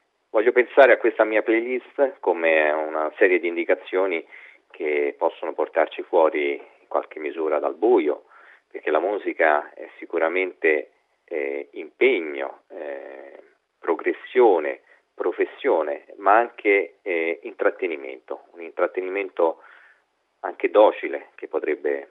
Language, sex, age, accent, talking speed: Italian, male, 40-59, native, 110 wpm